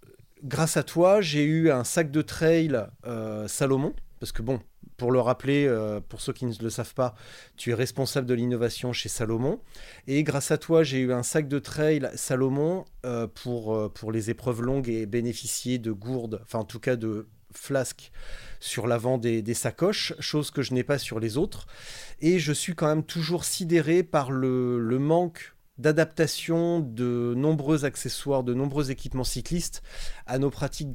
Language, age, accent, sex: French, 30-49, French, male